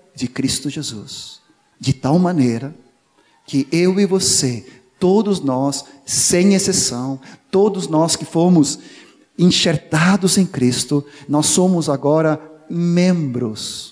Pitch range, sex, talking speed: 140-185 Hz, male, 110 wpm